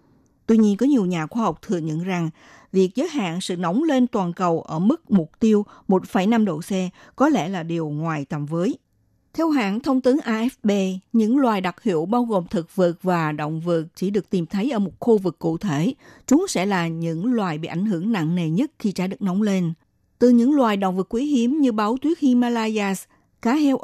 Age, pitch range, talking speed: 60-79, 175-240 Hz, 220 wpm